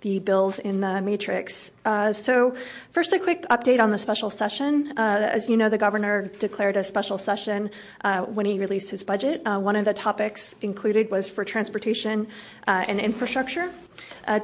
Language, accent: English, American